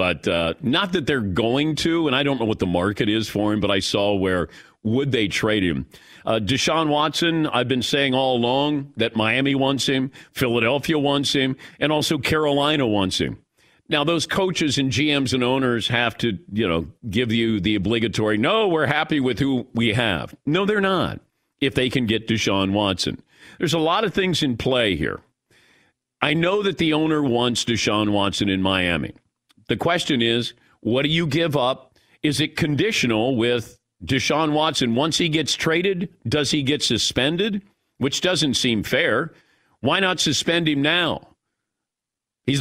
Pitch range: 115-155 Hz